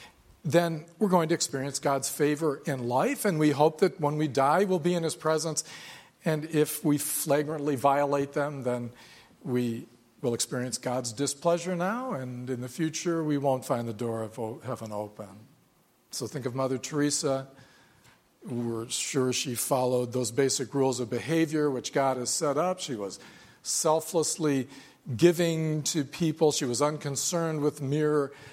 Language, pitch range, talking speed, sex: English, 130-160 Hz, 160 wpm, male